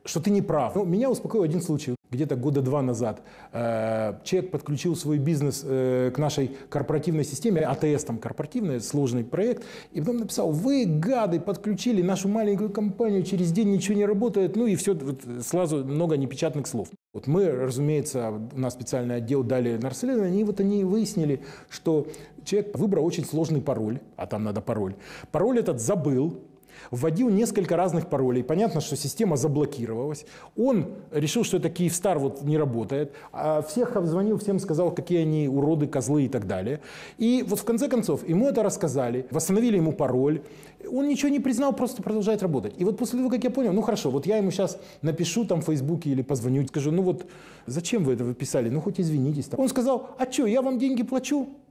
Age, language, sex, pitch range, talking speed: 30-49, Russian, male, 140-205 Hz, 180 wpm